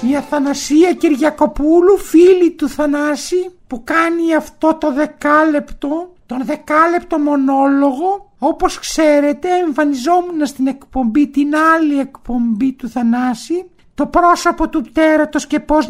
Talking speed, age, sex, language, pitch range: 115 wpm, 50-69, male, Greek, 260-340 Hz